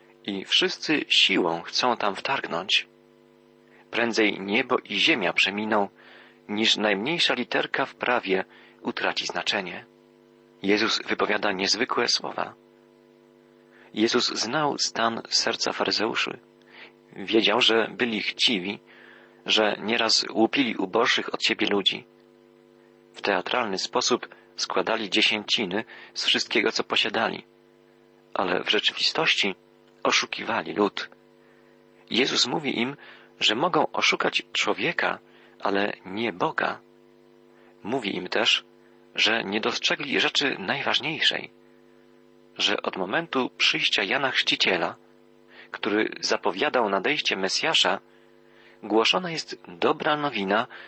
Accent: native